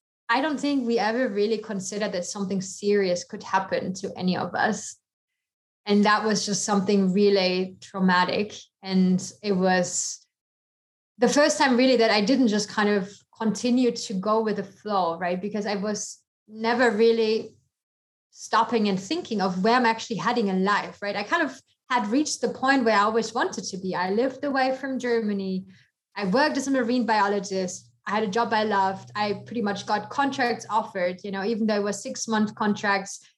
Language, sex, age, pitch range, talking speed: English, female, 20-39, 200-240 Hz, 185 wpm